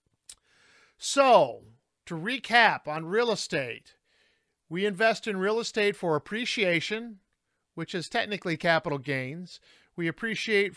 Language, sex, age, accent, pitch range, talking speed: English, male, 40-59, American, 170-210 Hz, 110 wpm